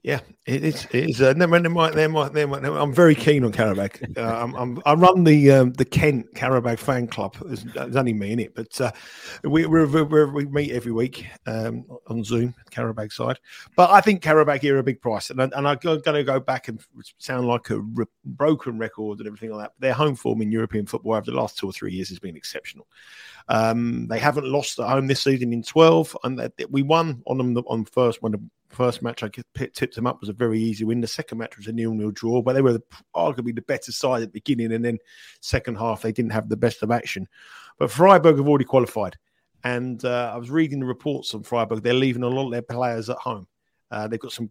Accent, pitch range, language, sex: British, 115-140 Hz, English, male